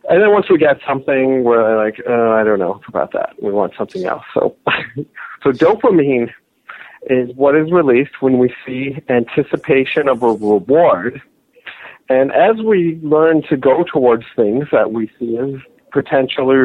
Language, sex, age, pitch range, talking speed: English, male, 40-59, 120-155 Hz, 160 wpm